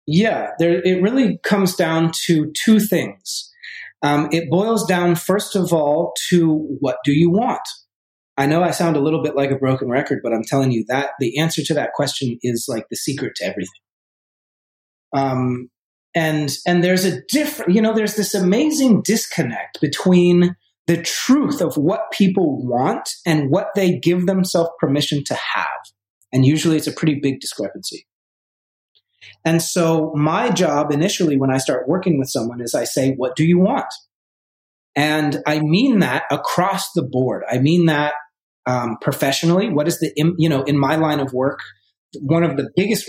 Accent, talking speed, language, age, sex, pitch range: American, 175 wpm, English, 30-49, male, 135-180 Hz